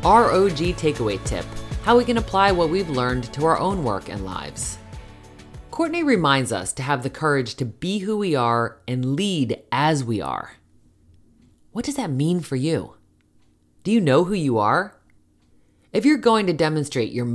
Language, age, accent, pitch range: English, 30-49, American, 120-185 Hz